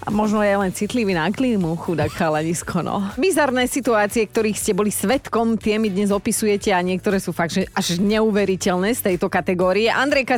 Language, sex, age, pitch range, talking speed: Slovak, female, 30-49, 185-230 Hz, 180 wpm